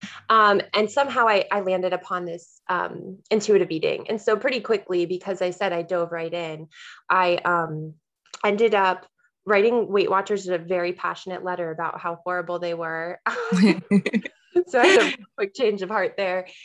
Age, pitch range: 20-39, 175-210 Hz